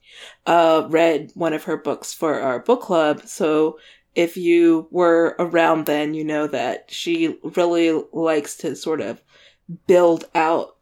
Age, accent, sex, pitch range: 20-39, American, female, 160-190 Hz